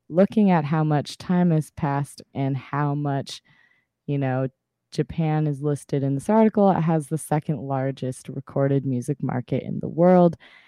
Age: 20-39